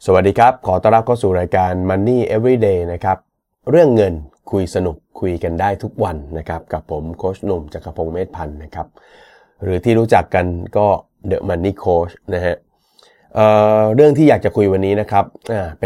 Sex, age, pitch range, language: male, 30-49, 90-110 Hz, Thai